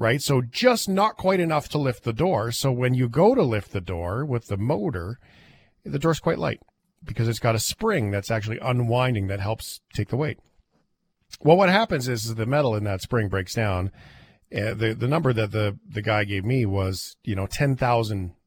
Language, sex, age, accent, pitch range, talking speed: English, male, 40-59, American, 105-140 Hz, 210 wpm